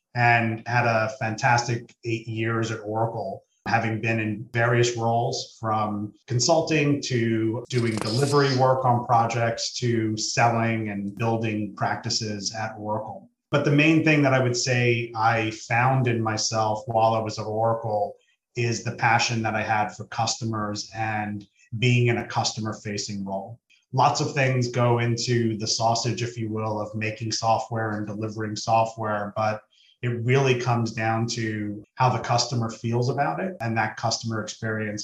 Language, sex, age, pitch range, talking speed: English, male, 30-49, 110-120 Hz, 155 wpm